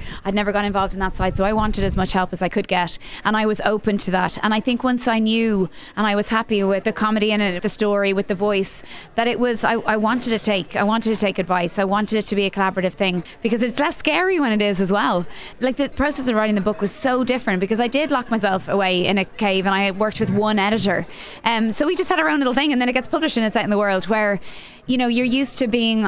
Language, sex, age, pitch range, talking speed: English, female, 20-39, 200-230 Hz, 290 wpm